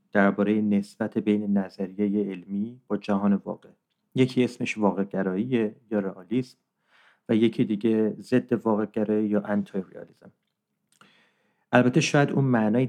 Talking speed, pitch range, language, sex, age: 110 wpm, 100-125 Hz, English, male, 40-59